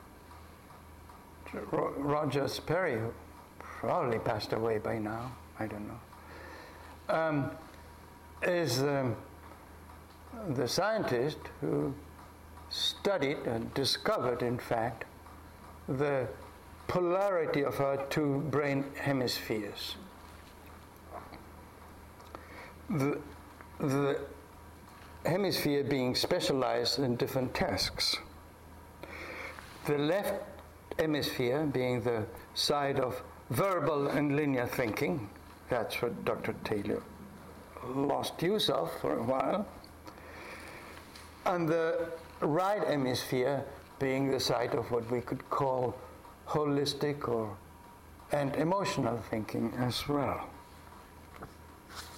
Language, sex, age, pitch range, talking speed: English, male, 60-79, 85-140 Hz, 85 wpm